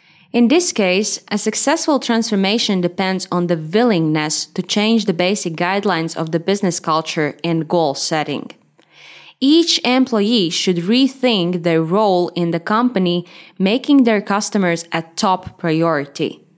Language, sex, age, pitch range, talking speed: English, female, 20-39, 175-225 Hz, 135 wpm